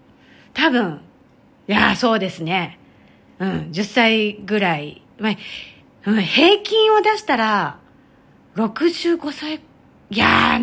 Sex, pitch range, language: female, 190-300 Hz, Japanese